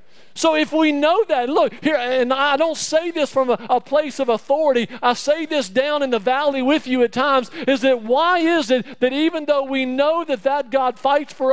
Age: 50-69